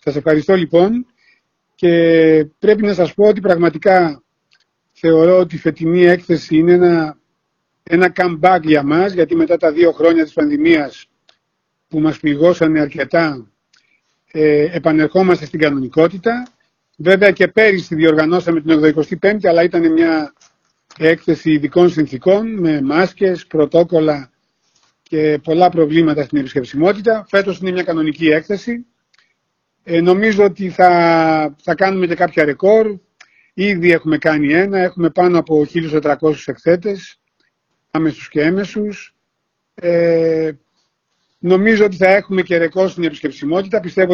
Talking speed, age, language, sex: 120 wpm, 40-59, Greek, male